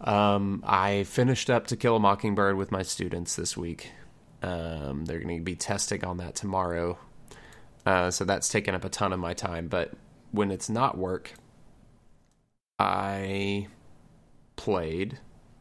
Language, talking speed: English, 150 wpm